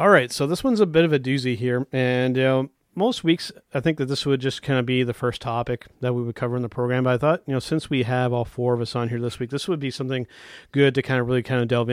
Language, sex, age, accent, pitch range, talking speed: English, male, 30-49, American, 125-145 Hz, 315 wpm